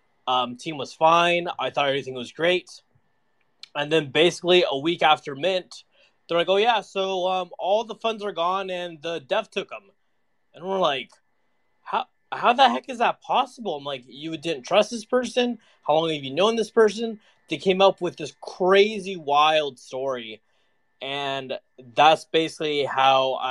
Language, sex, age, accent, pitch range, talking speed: English, male, 20-39, American, 135-175 Hz, 175 wpm